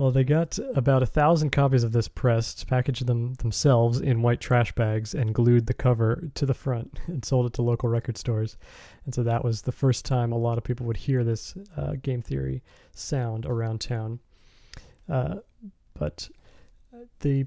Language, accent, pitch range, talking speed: English, American, 115-135 Hz, 185 wpm